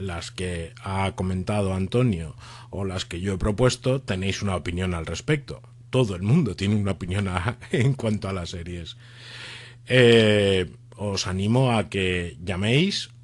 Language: Spanish